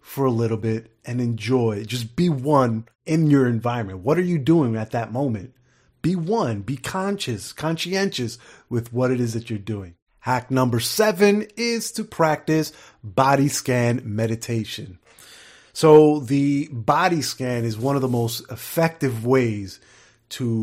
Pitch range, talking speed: 115-145 Hz, 150 wpm